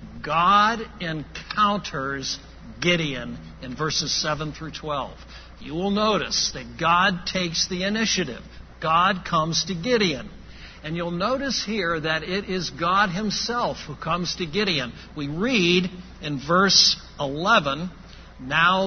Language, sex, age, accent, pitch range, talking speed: English, male, 60-79, American, 150-205 Hz, 125 wpm